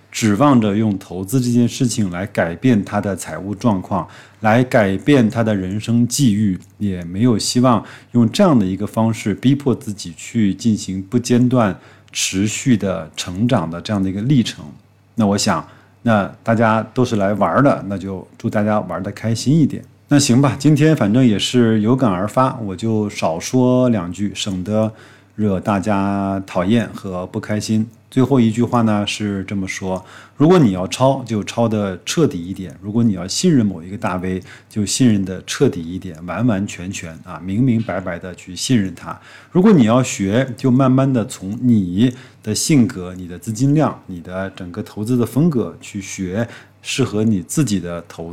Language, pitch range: Chinese, 95-125 Hz